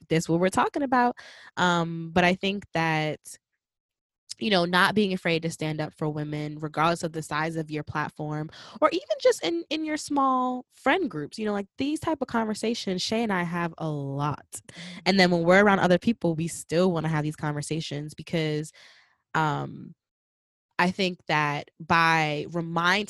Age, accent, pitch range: 20-39, American, 150-205 Hz